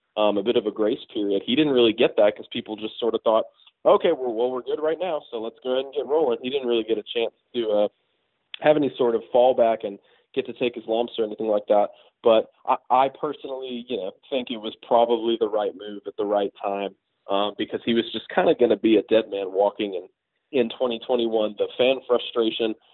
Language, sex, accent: English, male, American